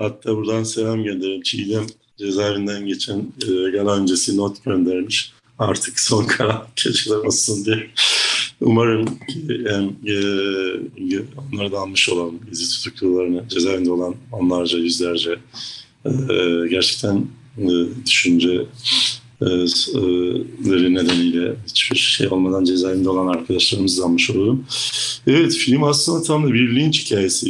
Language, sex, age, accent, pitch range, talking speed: Turkish, male, 50-69, native, 95-125 Hz, 105 wpm